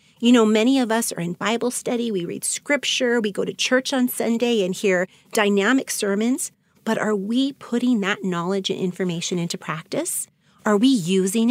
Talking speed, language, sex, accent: 180 wpm, English, female, American